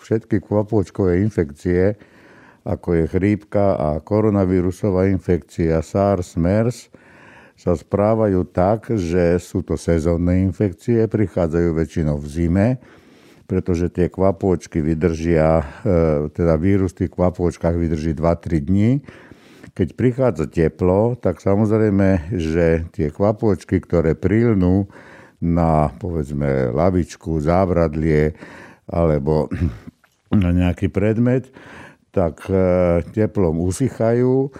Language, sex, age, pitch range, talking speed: Slovak, male, 60-79, 85-105 Hz, 95 wpm